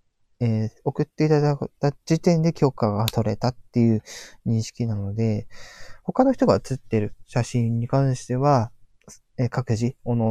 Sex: male